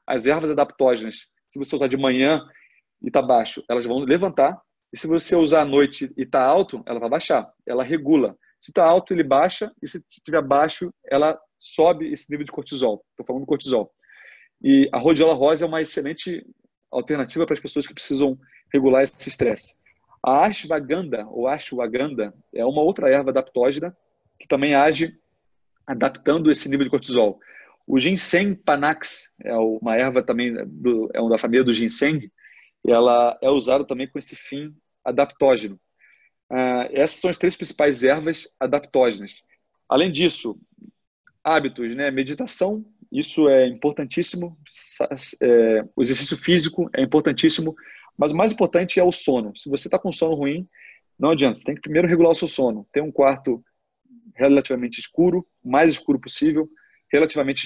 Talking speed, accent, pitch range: 160 wpm, Brazilian, 135-175 Hz